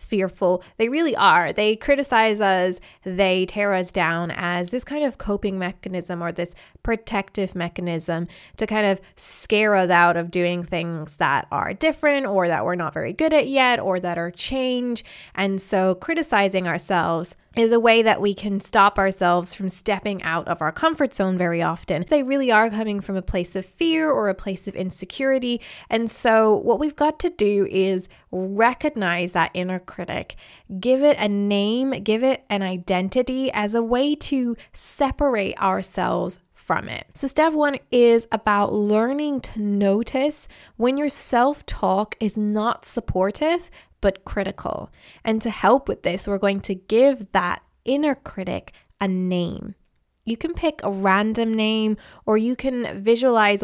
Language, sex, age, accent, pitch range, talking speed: English, female, 20-39, American, 185-245 Hz, 165 wpm